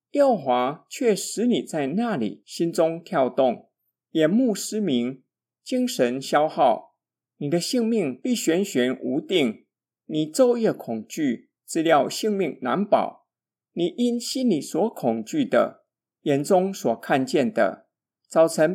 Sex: male